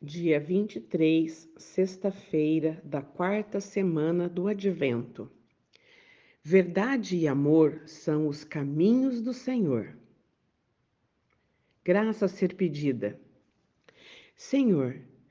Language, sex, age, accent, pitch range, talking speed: Portuguese, female, 50-69, Brazilian, 145-200 Hz, 80 wpm